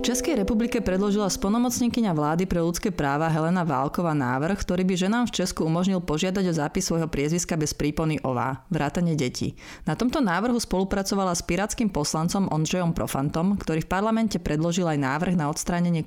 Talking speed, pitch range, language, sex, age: 170 wpm, 150-185 Hz, Slovak, female, 30-49